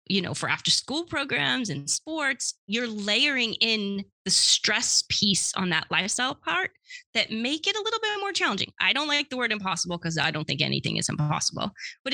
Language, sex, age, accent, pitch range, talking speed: English, female, 30-49, American, 175-245 Hz, 195 wpm